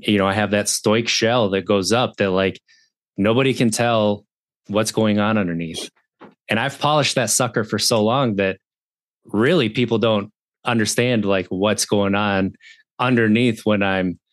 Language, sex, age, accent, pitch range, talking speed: English, male, 20-39, American, 95-120 Hz, 165 wpm